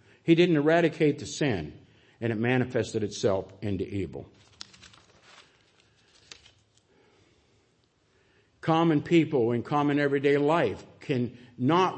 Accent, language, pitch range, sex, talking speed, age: American, English, 115-180 Hz, male, 95 wpm, 50-69